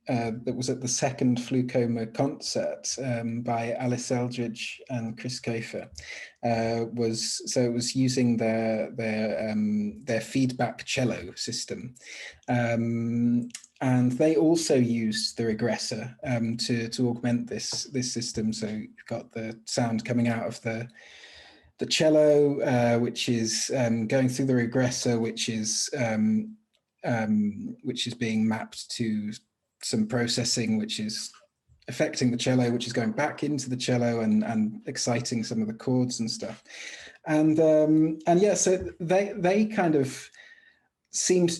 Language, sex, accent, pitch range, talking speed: English, male, British, 115-145 Hz, 150 wpm